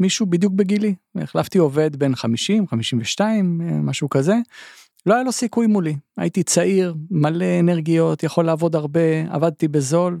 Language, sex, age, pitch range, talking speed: Hebrew, male, 40-59, 135-180 Hz, 140 wpm